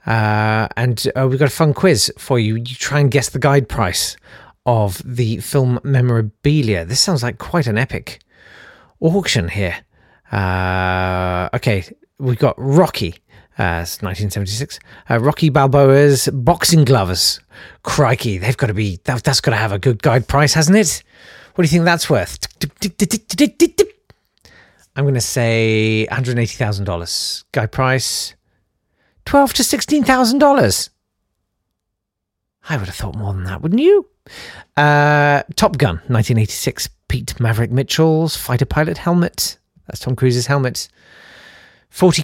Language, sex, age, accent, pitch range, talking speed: English, male, 40-59, British, 110-160 Hz, 145 wpm